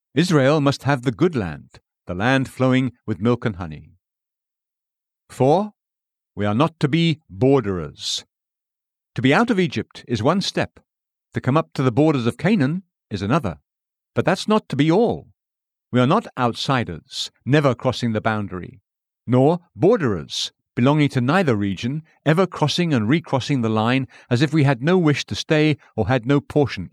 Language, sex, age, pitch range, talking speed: English, male, 50-69, 110-155 Hz, 170 wpm